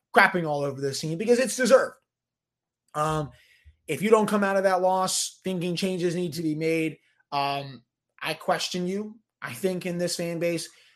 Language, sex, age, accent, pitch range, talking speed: English, male, 30-49, American, 160-225 Hz, 180 wpm